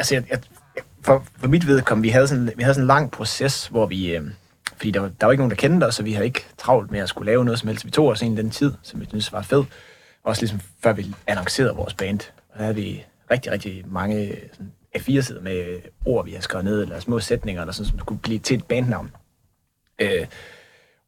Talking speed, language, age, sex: 240 wpm, Danish, 30-49, male